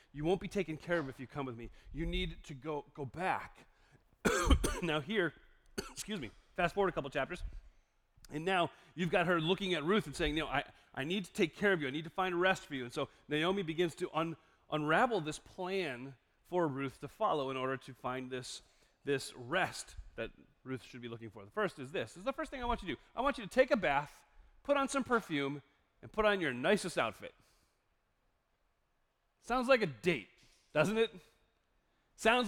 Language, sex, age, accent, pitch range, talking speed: English, male, 30-49, American, 150-220 Hz, 220 wpm